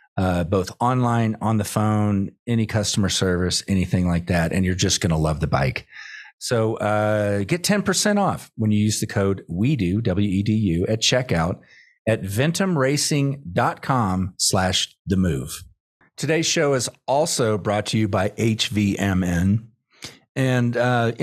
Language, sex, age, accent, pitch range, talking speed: English, male, 40-59, American, 95-120 Hz, 145 wpm